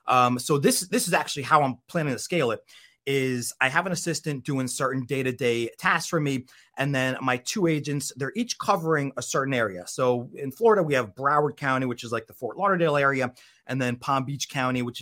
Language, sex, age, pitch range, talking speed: English, male, 30-49, 125-165 Hz, 215 wpm